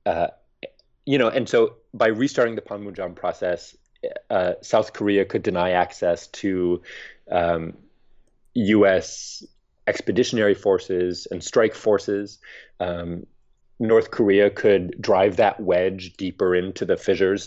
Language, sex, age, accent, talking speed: English, male, 30-49, American, 120 wpm